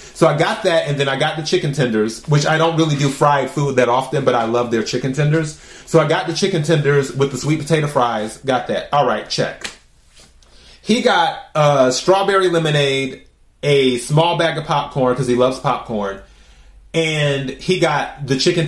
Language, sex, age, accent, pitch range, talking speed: English, male, 30-49, American, 130-170 Hz, 195 wpm